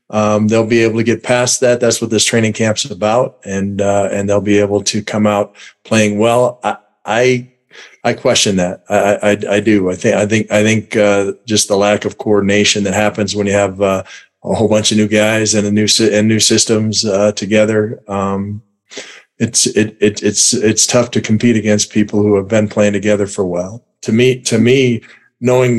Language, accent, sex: English, American, male